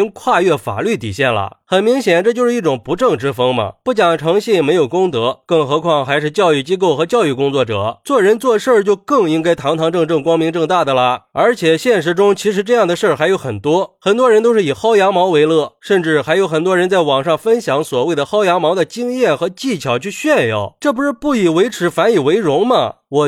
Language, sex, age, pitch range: Chinese, male, 30-49, 150-220 Hz